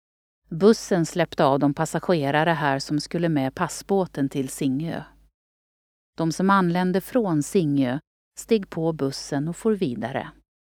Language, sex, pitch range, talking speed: Swedish, female, 140-185 Hz, 130 wpm